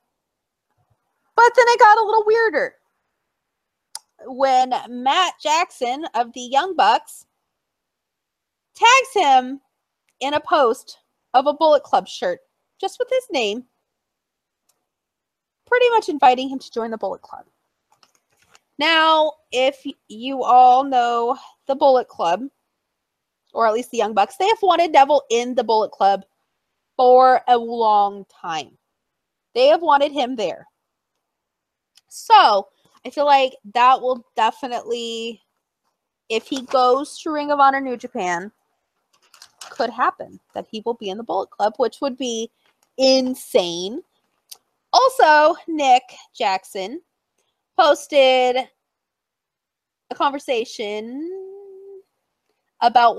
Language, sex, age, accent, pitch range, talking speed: English, female, 30-49, American, 230-315 Hz, 120 wpm